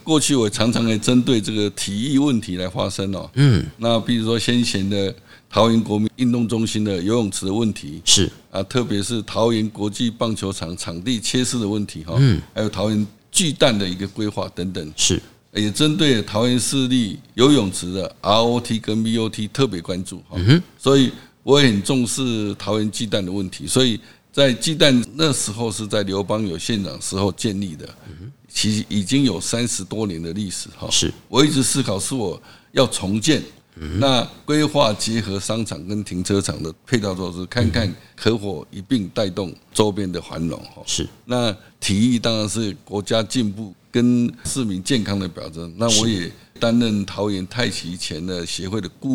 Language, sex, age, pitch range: Chinese, male, 60-79, 100-120 Hz